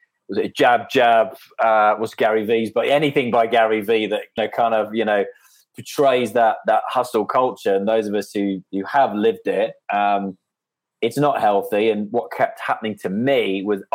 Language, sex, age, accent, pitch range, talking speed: English, male, 20-39, British, 100-125 Hz, 195 wpm